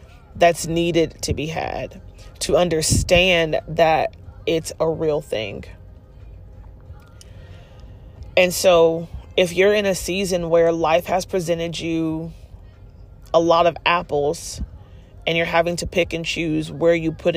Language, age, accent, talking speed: English, 30-49, American, 130 wpm